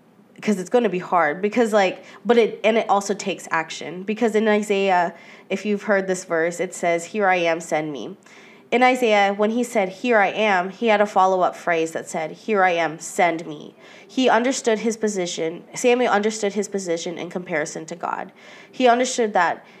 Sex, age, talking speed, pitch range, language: female, 20-39, 195 wpm, 180-215 Hz, English